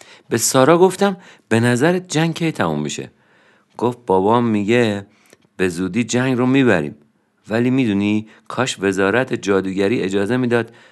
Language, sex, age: Persian, male, 50-69